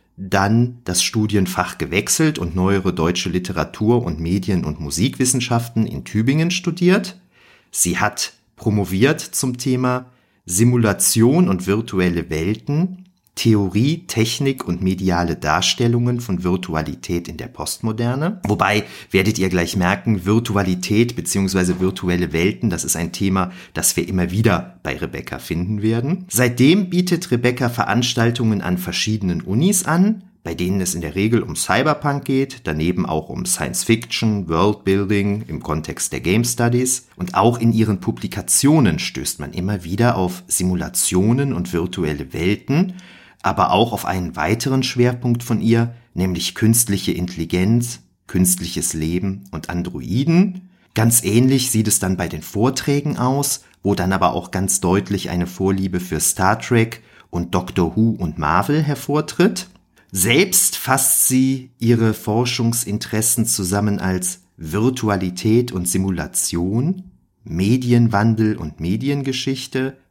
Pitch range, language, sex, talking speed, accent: 90-125 Hz, German, male, 130 wpm, German